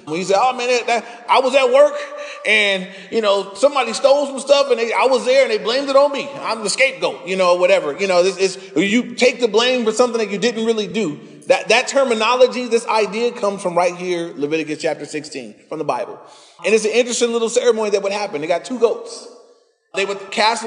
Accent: American